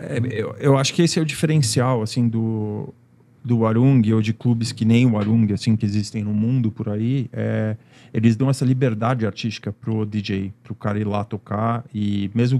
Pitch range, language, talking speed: 110-140 Hz, Portuguese, 200 wpm